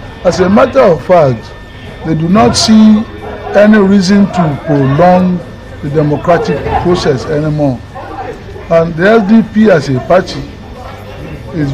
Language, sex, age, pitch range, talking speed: English, male, 60-79, 120-180 Hz, 125 wpm